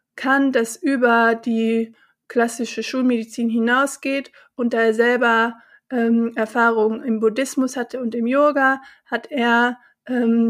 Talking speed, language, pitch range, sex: 125 wpm, German, 225-250 Hz, female